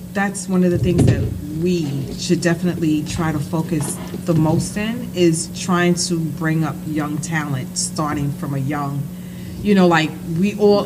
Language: English